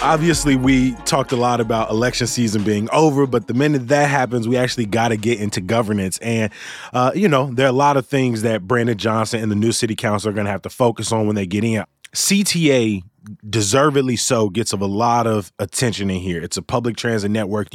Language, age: English, 20-39